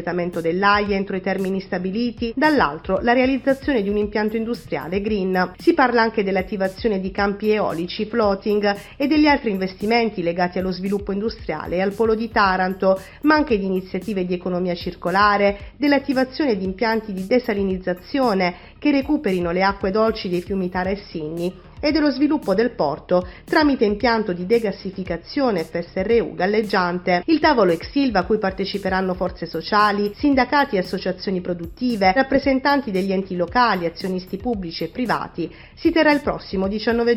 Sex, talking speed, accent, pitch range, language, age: female, 145 wpm, native, 185-240 Hz, Italian, 40-59